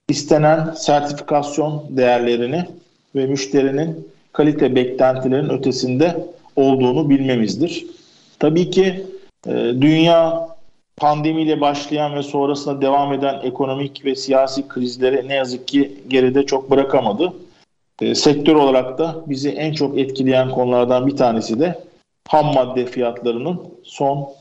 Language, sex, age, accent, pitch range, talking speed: Turkish, male, 50-69, native, 130-160 Hz, 115 wpm